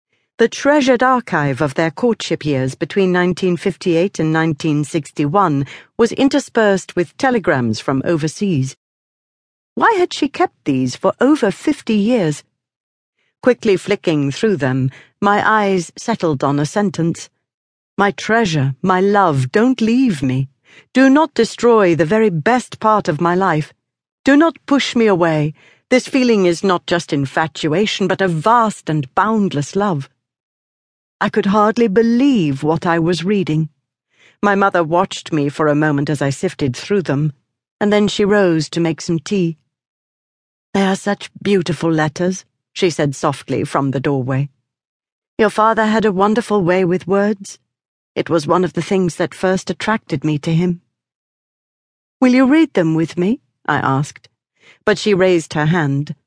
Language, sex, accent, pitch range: English, female, British, 150-210 Hz